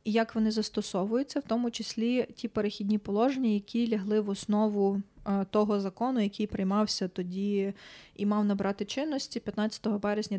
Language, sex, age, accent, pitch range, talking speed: Ukrainian, female, 20-39, native, 195-220 Hz, 145 wpm